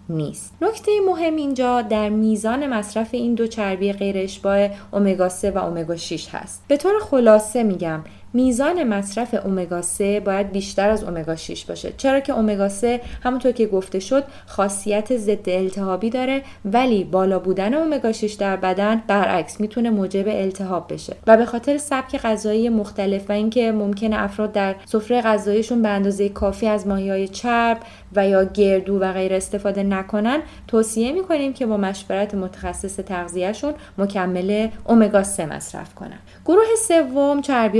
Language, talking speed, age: Persian, 150 wpm, 20-39